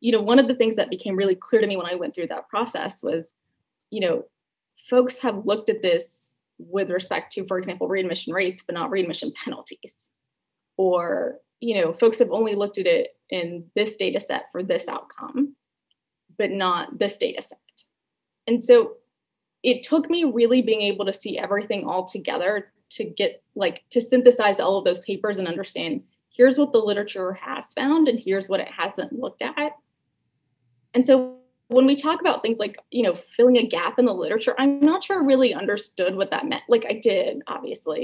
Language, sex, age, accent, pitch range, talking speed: English, female, 20-39, American, 195-265 Hz, 195 wpm